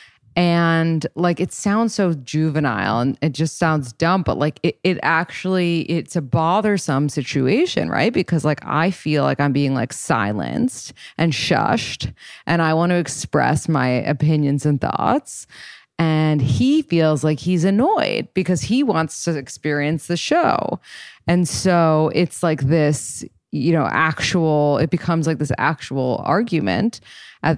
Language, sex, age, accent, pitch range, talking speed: English, female, 20-39, American, 145-185 Hz, 150 wpm